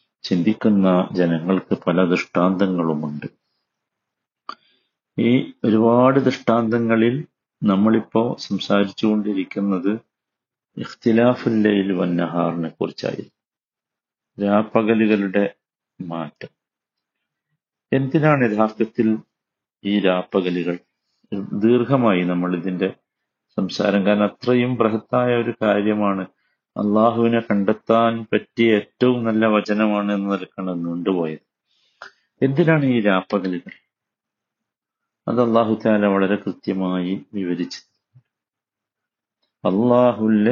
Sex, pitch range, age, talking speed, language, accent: male, 100-115 Hz, 50-69, 65 wpm, Malayalam, native